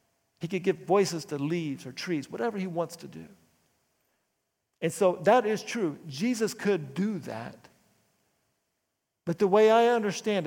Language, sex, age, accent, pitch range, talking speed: English, male, 50-69, American, 140-195 Hz, 155 wpm